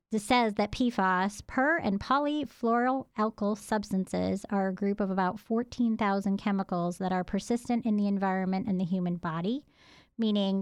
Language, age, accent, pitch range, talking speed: English, 30-49, American, 185-215 Hz, 145 wpm